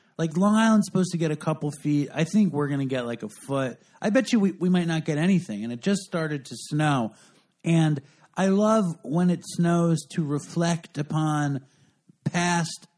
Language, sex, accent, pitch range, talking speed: English, male, American, 140-175 Hz, 200 wpm